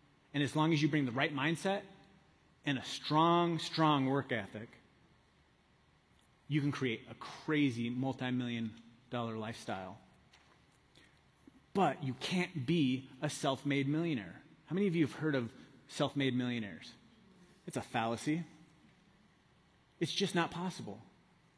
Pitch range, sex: 125-155 Hz, male